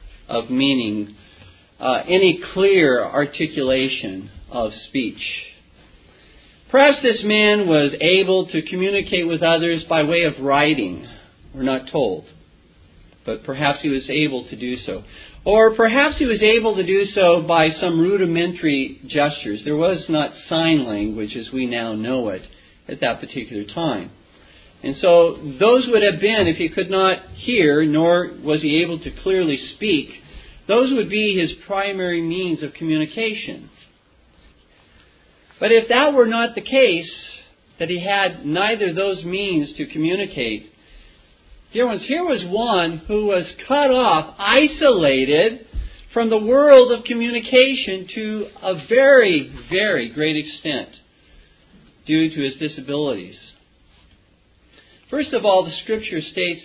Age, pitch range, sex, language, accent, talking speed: 40-59, 145-215 Hz, male, English, American, 140 wpm